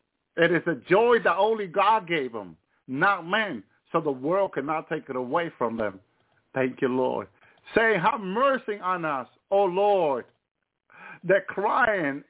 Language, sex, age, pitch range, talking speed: English, male, 50-69, 145-205 Hz, 155 wpm